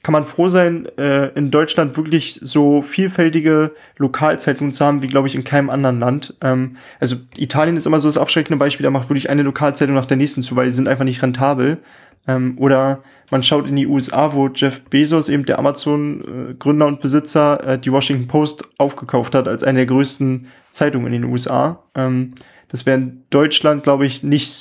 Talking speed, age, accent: 185 wpm, 20-39, German